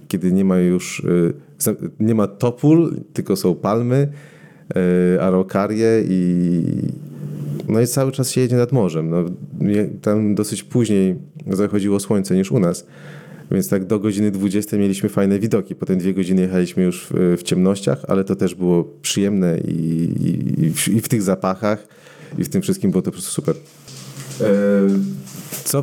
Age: 30-49